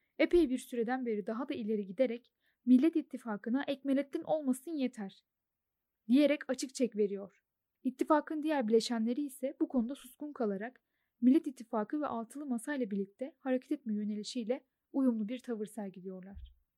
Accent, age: native, 10-29